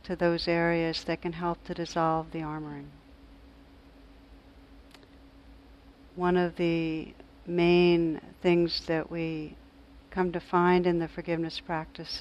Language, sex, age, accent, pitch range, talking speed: English, female, 60-79, American, 155-180 Hz, 115 wpm